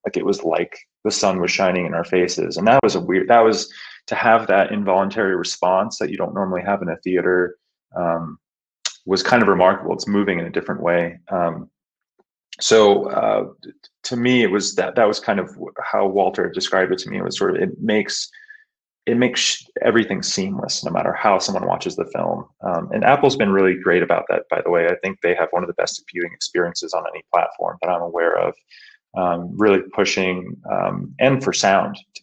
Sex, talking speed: male, 210 wpm